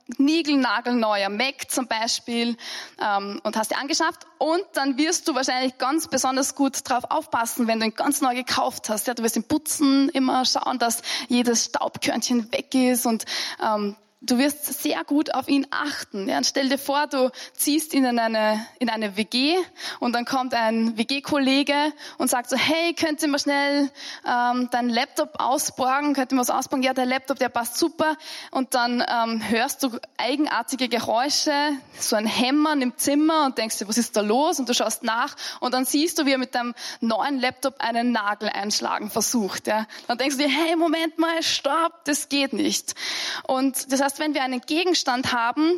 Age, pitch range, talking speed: 20-39, 235-295 Hz, 190 wpm